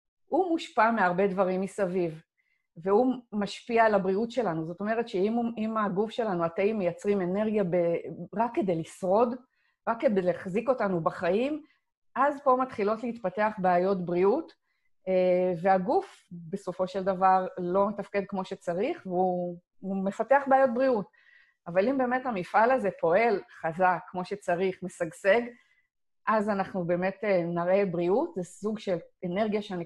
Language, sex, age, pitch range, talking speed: Hebrew, female, 30-49, 180-230 Hz, 130 wpm